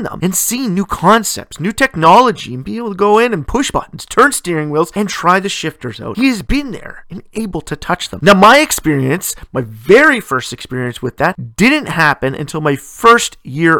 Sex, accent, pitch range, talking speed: male, American, 150-225 Hz, 205 wpm